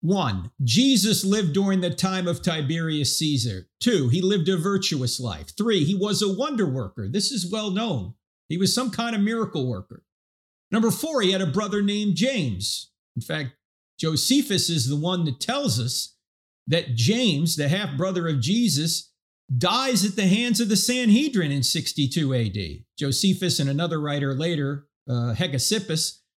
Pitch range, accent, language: 135-195 Hz, American, English